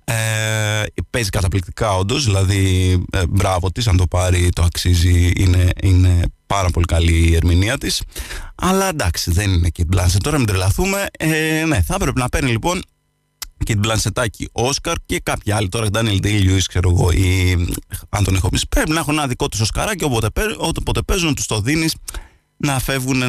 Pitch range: 90-125 Hz